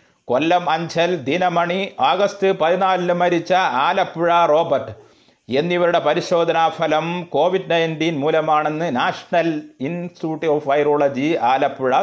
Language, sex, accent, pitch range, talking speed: Malayalam, male, native, 145-185 Hz, 95 wpm